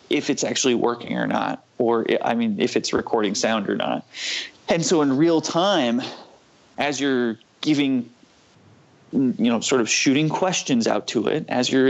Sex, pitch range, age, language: male, 120-170 Hz, 30-49, English